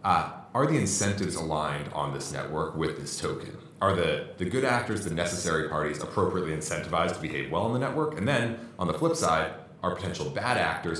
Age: 30-49